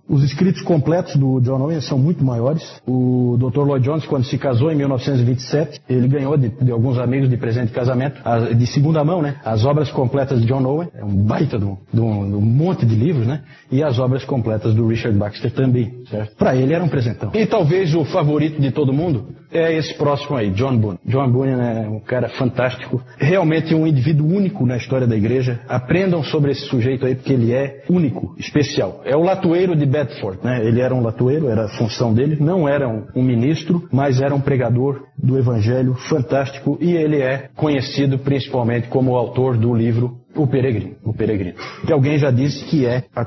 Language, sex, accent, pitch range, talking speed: Portuguese, male, Brazilian, 120-145 Hz, 200 wpm